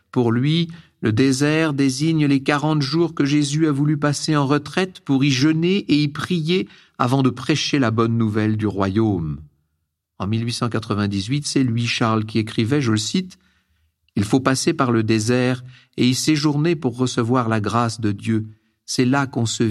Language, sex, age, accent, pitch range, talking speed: French, male, 50-69, French, 110-145 Hz, 175 wpm